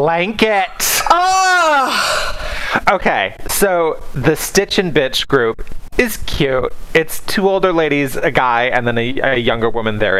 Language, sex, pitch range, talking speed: English, male, 130-185 Hz, 140 wpm